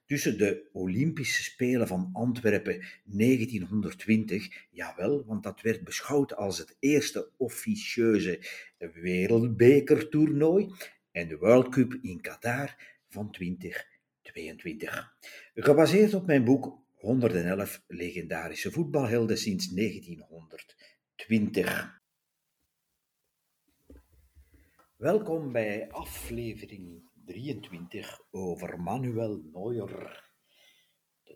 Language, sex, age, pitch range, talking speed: Dutch, male, 50-69, 95-140 Hz, 80 wpm